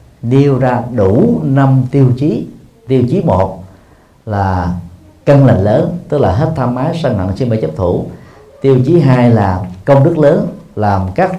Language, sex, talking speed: Vietnamese, male, 175 wpm